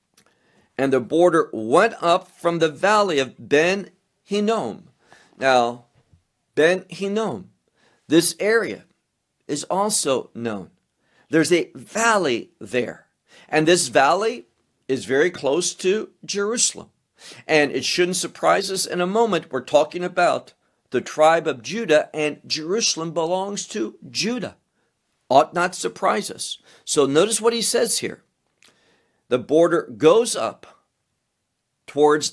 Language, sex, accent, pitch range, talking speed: English, male, American, 145-200 Hz, 120 wpm